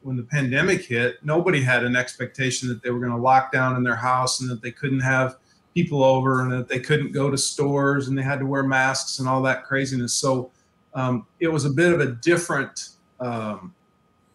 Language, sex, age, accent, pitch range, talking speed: English, male, 40-59, American, 130-150 Hz, 215 wpm